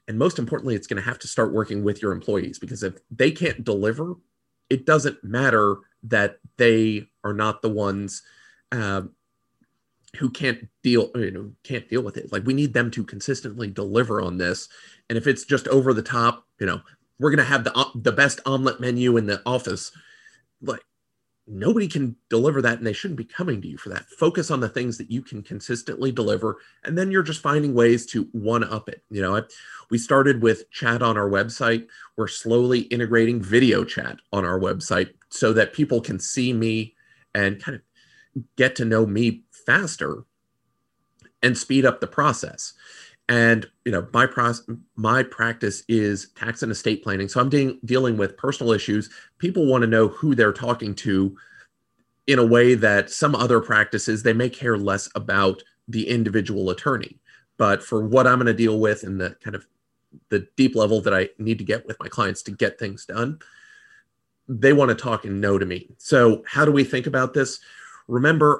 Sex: male